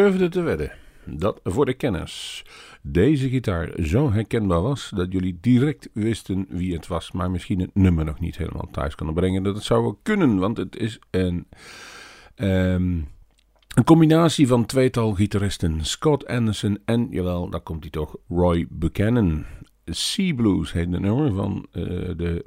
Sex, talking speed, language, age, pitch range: male, 160 wpm, Dutch, 50-69, 85-110 Hz